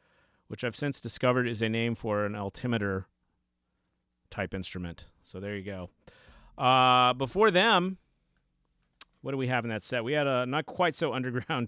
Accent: American